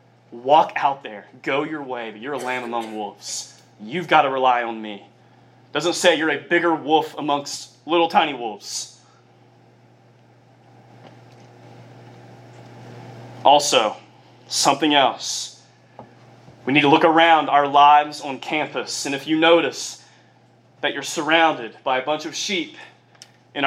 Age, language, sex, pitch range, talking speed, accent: 20-39, English, male, 110-160 Hz, 135 wpm, American